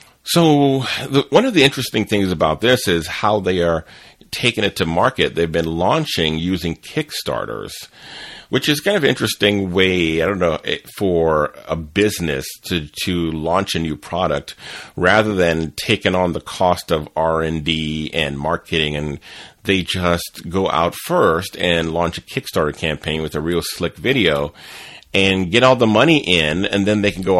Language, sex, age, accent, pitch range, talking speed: English, male, 40-59, American, 80-105 Hz, 170 wpm